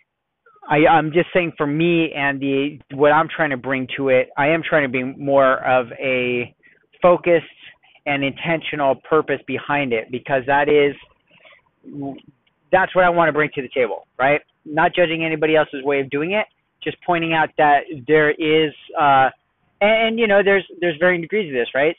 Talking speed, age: 185 wpm, 40-59